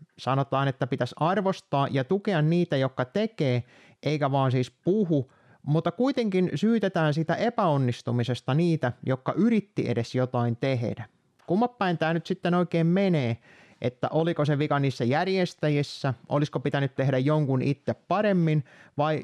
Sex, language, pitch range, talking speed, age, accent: male, Finnish, 130-175 Hz, 135 wpm, 30-49, native